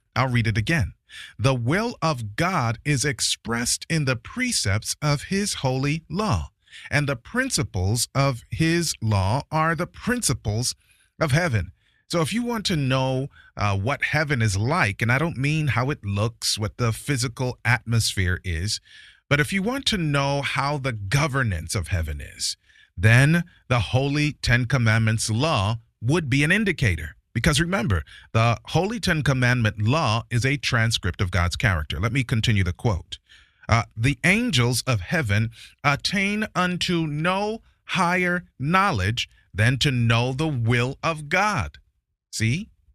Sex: male